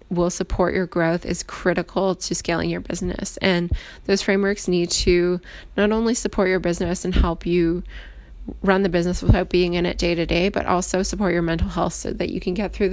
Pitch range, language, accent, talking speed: 170-190 Hz, English, American, 210 wpm